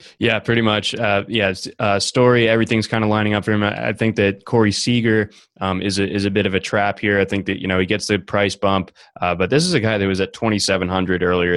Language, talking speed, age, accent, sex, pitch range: English, 260 wpm, 20-39, American, male, 95-110 Hz